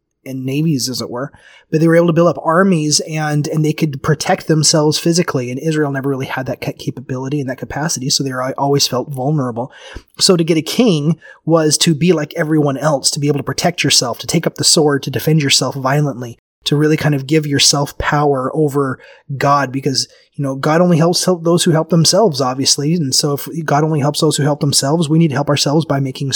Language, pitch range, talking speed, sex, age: English, 135-165 Hz, 230 wpm, male, 30-49